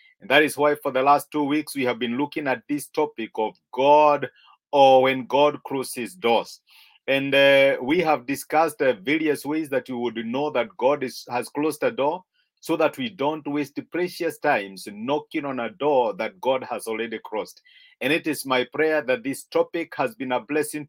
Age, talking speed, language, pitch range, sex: 50-69, 200 wpm, English, 140-175 Hz, male